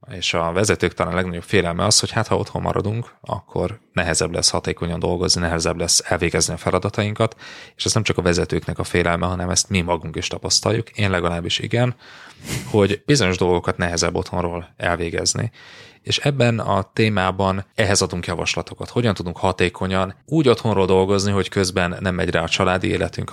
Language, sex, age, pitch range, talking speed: Hungarian, male, 20-39, 90-110 Hz, 170 wpm